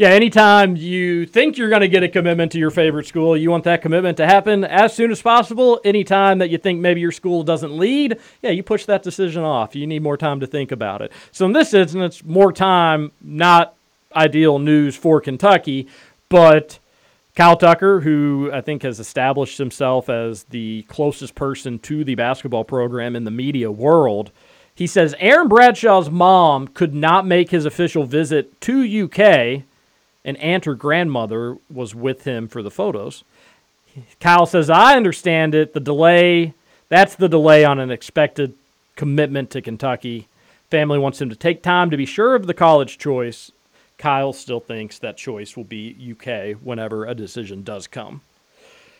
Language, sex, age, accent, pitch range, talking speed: English, male, 40-59, American, 135-180 Hz, 175 wpm